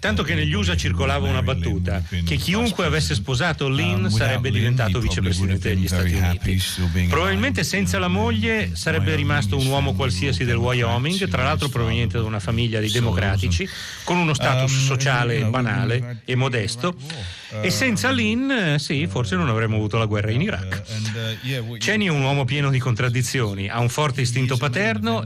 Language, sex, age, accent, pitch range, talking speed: Italian, male, 40-59, native, 100-135 Hz, 160 wpm